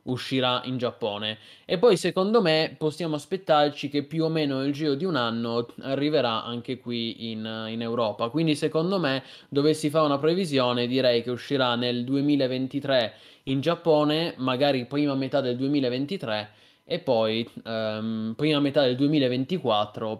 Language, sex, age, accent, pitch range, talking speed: Italian, male, 20-39, native, 120-150 Hz, 150 wpm